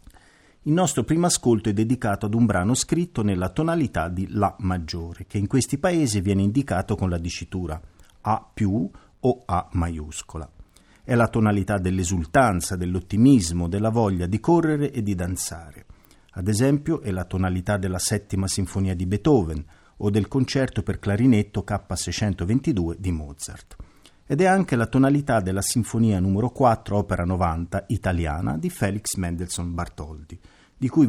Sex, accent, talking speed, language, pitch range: male, native, 145 wpm, Italian, 90-115 Hz